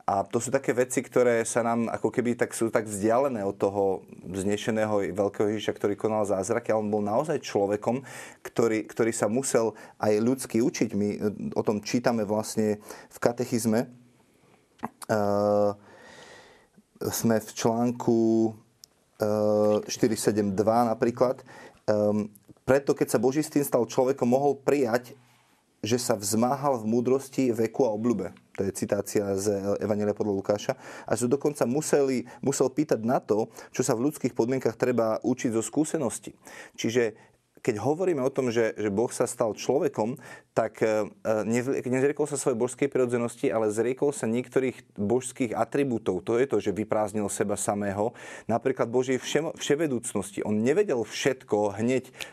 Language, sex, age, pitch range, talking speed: Slovak, male, 30-49, 105-125 Hz, 140 wpm